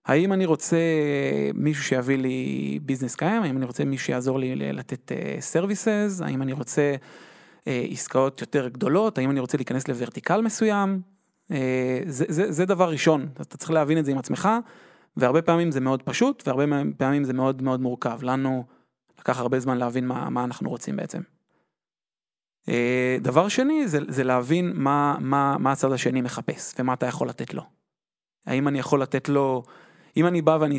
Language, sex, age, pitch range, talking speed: Hebrew, male, 30-49, 130-170 Hz, 175 wpm